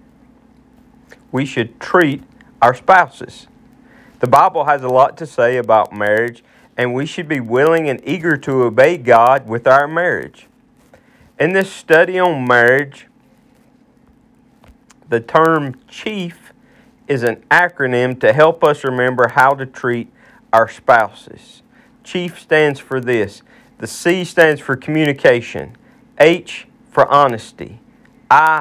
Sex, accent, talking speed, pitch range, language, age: male, American, 125 wpm, 125-185 Hz, English, 40-59